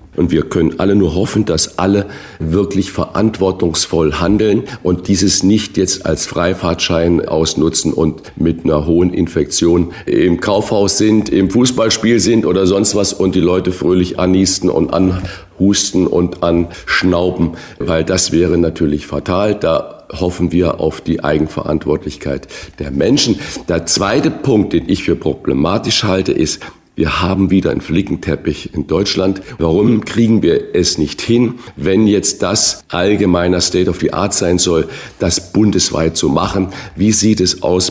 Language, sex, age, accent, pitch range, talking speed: German, male, 50-69, German, 85-100 Hz, 150 wpm